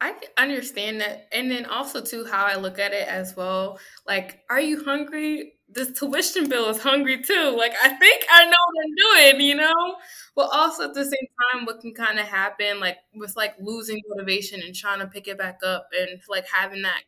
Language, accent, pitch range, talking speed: English, American, 190-245 Hz, 215 wpm